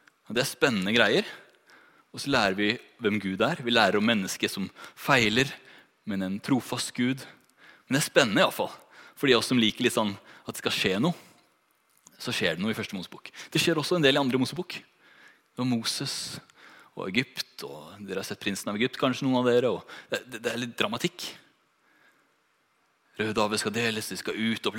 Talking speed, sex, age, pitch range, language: 190 wpm, male, 30-49, 110-135 Hz, English